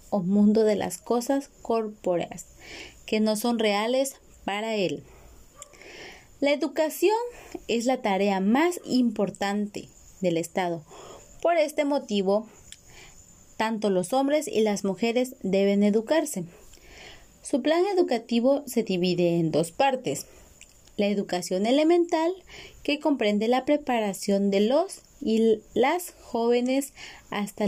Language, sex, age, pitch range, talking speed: Spanish, female, 30-49, 200-275 Hz, 115 wpm